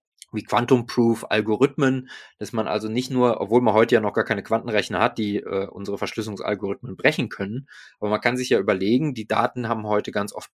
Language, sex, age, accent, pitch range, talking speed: German, male, 20-39, German, 110-135 Hz, 195 wpm